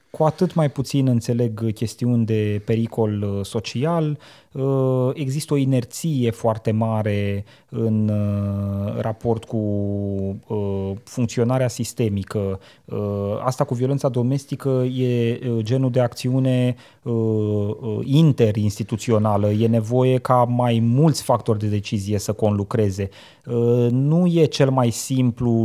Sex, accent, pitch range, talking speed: male, native, 110-130 Hz, 100 wpm